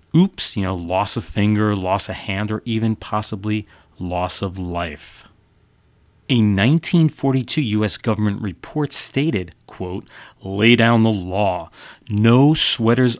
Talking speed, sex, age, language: 125 wpm, male, 30-49, English